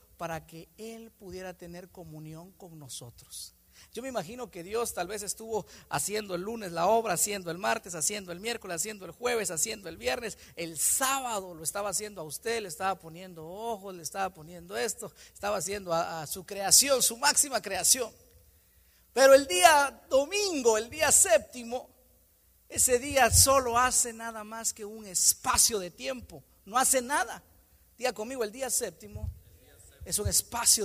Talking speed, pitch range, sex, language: 165 wpm, 170-245 Hz, male, Spanish